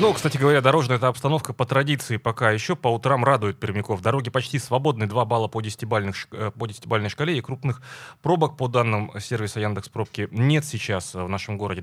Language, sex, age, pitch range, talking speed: Russian, male, 20-39, 105-135 Hz, 200 wpm